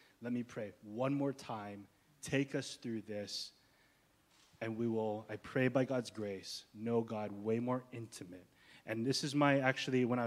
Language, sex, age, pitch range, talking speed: English, male, 20-39, 125-155 Hz, 175 wpm